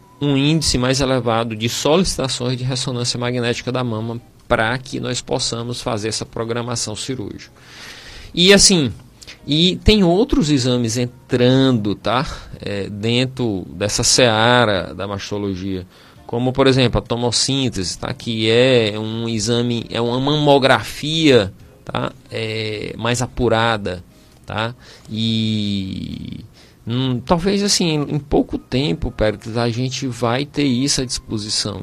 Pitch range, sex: 110-135 Hz, male